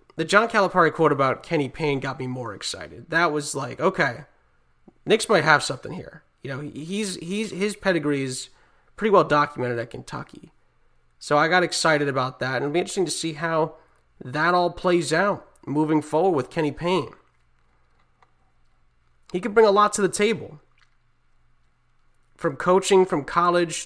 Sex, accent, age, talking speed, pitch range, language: male, American, 30-49, 165 wpm, 135-175 Hz, English